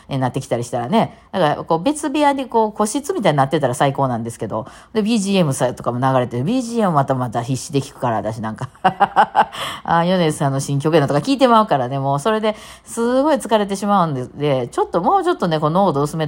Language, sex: Japanese, female